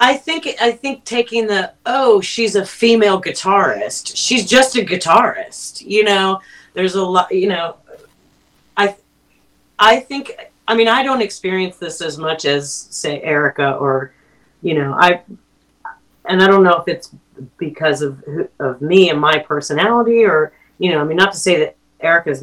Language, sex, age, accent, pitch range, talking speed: English, female, 30-49, American, 160-220 Hz, 170 wpm